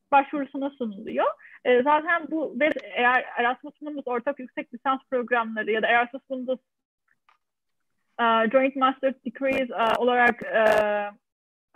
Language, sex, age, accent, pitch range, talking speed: Turkish, female, 30-49, native, 245-305 Hz, 120 wpm